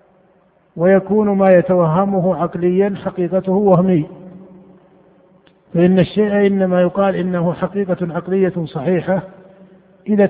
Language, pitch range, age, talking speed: Arabic, 175-195 Hz, 50-69, 85 wpm